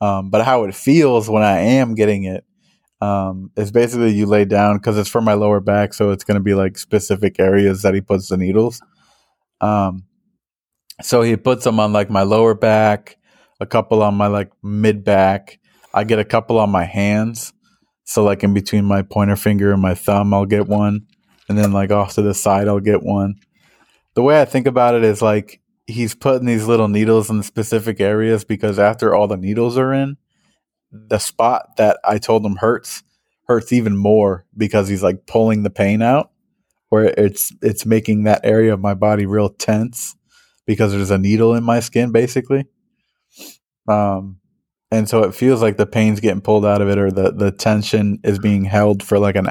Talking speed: 200 wpm